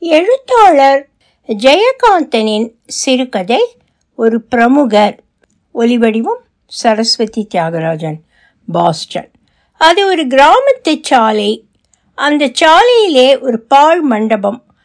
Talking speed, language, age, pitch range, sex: 70 wpm, Tamil, 60-79, 220-315 Hz, female